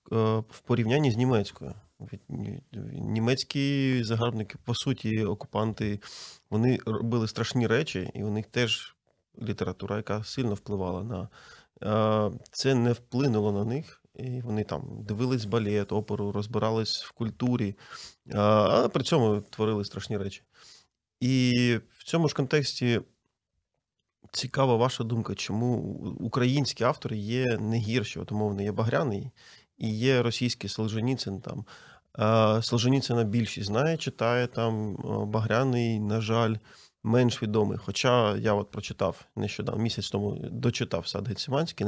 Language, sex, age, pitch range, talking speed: Ukrainian, male, 30-49, 105-125 Hz, 120 wpm